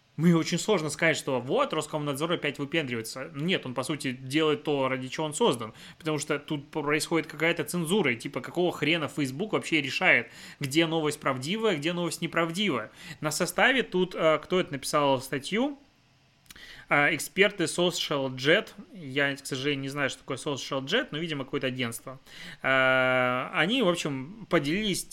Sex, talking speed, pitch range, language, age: male, 150 wpm, 135-170 Hz, Russian, 20-39